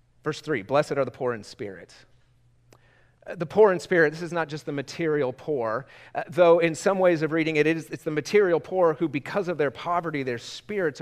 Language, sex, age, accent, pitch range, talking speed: English, male, 40-59, American, 125-170 Hz, 205 wpm